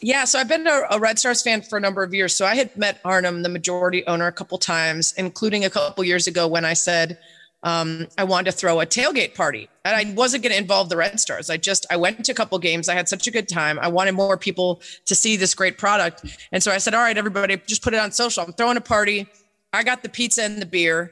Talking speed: 280 wpm